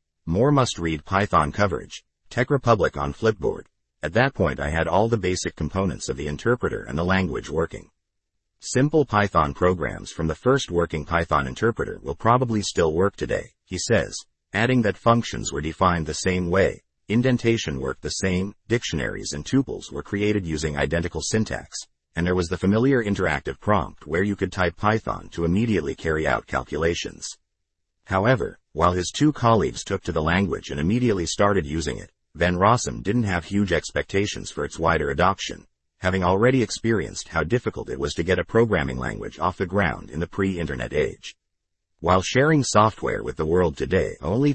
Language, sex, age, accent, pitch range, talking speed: English, male, 50-69, American, 80-110 Hz, 175 wpm